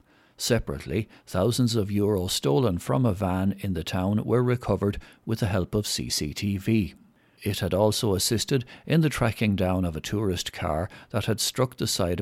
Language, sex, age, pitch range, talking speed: English, male, 60-79, 95-120 Hz, 170 wpm